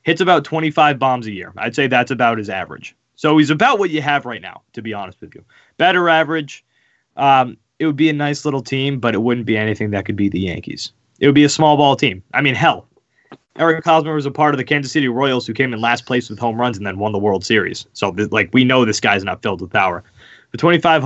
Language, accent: English, American